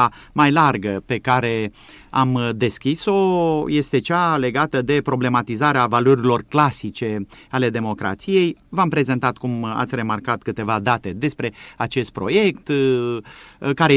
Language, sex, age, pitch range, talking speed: Romanian, male, 30-49, 115-155 Hz, 110 wpm